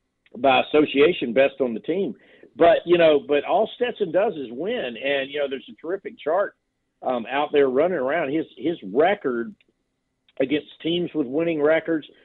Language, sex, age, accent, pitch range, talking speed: English, male, 50-69, American, 130-160 Hz, 170 wpm